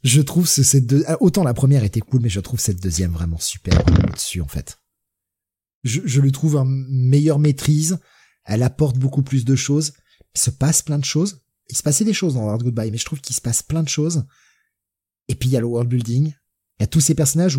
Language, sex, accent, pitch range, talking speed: French, male, French, 100-150 Hz, 240 wpm